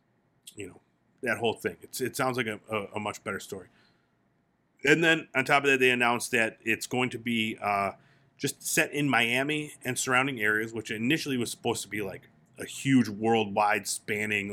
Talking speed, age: 185 wpm, 30-49